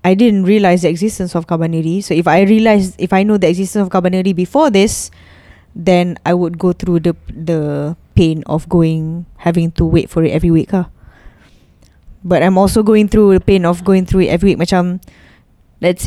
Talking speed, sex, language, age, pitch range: 200 wpm, female, English, 10-29, 170-215 Hz